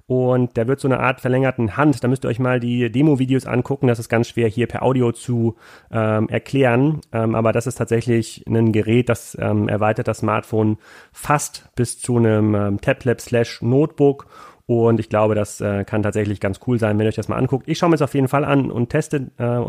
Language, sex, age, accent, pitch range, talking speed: German, male, 30-49, German, 110-130 Hz, 220 wpm